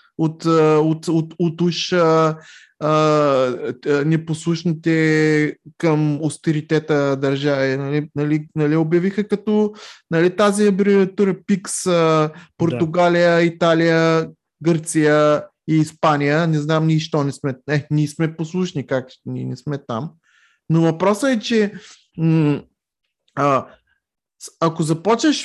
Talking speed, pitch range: 100 wpm, 150-185 Hz